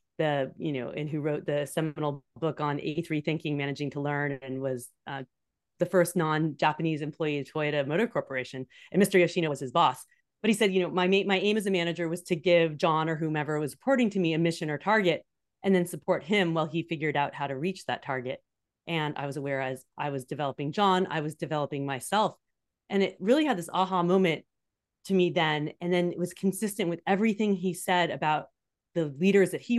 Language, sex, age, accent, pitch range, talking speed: English, female, 30-49, American, 150-185 Hz, 215 wpm